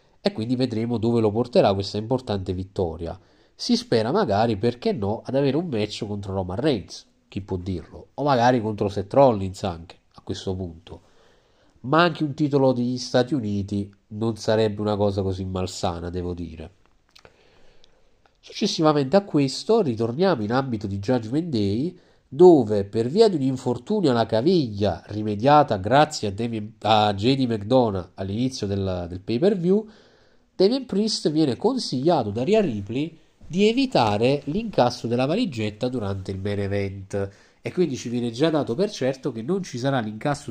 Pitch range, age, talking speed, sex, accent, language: 100-145 Hz, 40-59, 155 wpm, male, native, Italian